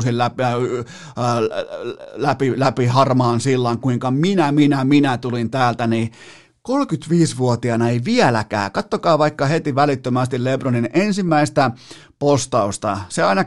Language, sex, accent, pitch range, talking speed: Finnish, male, native, 125-155 Hz, 105 wpm